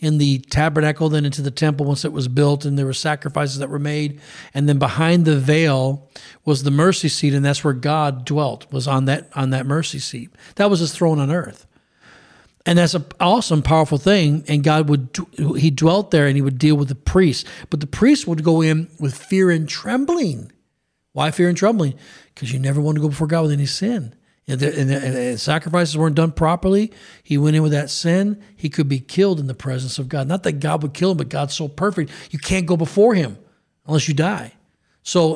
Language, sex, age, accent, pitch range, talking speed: English, male, 40-59, American, 145-170 Hz, 215 wpm